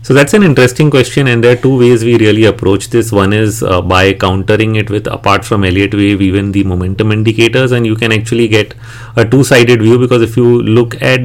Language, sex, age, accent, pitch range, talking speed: English, male, 30-49, Indian, 105-125 Hz, 225 wpm